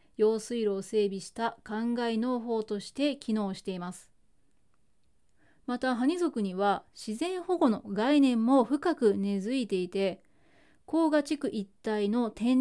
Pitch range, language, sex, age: 210-280 Hz, Japanese, female, 20-39